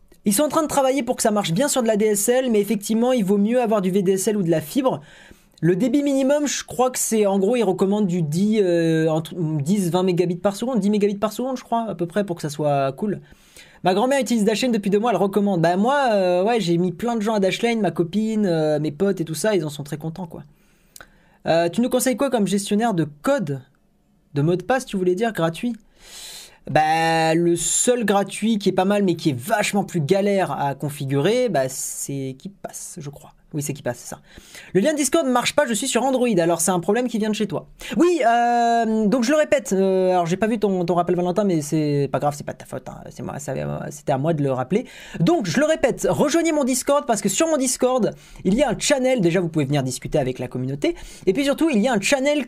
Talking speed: 255 wpm